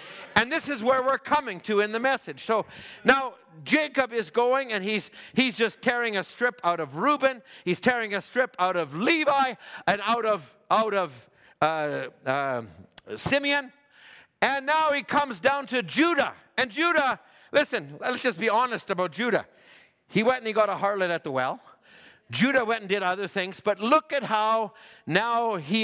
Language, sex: English, male